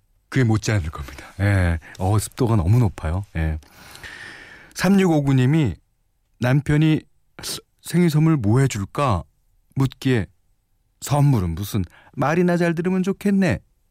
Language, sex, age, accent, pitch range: Korean, male, 40-59, native, 95-155 Hz